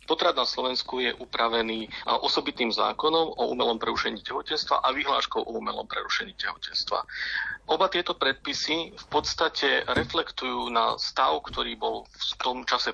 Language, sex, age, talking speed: Slovak, male, 40-59, 140 wpm